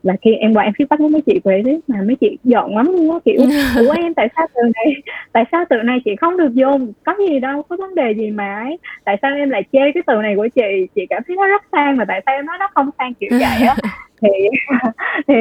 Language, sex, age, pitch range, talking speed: Vietnamese, female, 20-39, 205-280 Hz, 275 wpm